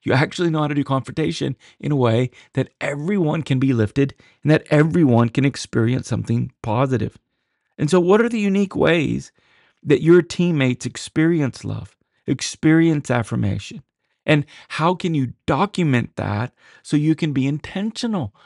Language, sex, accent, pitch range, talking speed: English, male, American, 110-150 Hz, 155 wpm